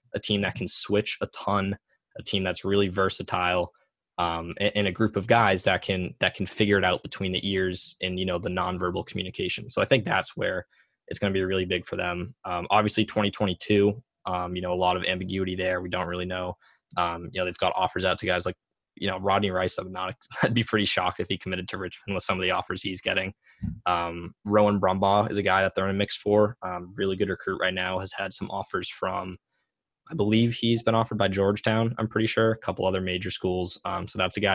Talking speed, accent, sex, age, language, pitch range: 235 wpm, American, male, 20-39, English, 90-105 Hz